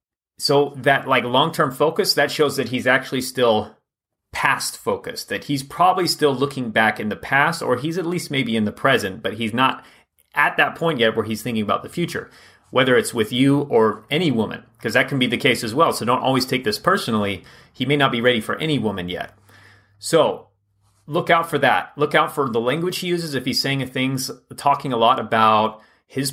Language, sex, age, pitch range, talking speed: English, male, 30-49, 110-140 Hz, 215 wpm